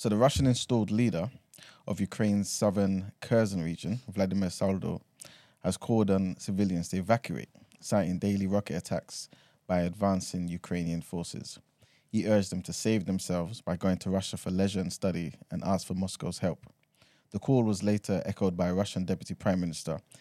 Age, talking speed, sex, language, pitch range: 20-39, 165 wpm, male, English, 90-105 Hz